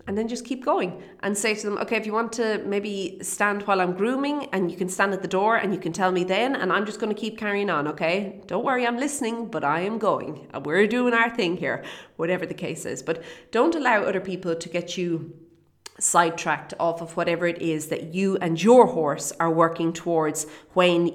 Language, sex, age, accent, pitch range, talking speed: English, female, 30-49, Irish, 165-205 Hz, 235 wpm